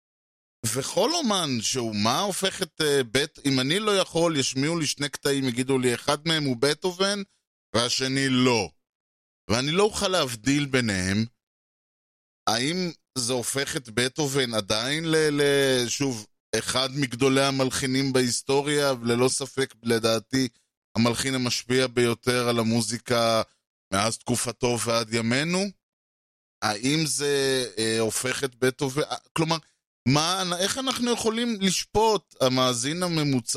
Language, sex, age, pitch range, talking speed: Hebrew, male, 20-39, 120-155 Hz, 120 wpm